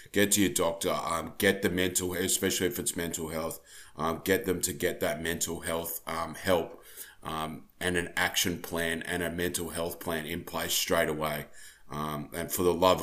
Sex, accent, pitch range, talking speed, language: male, Australian, 80-90 Hz, 195 wpm, English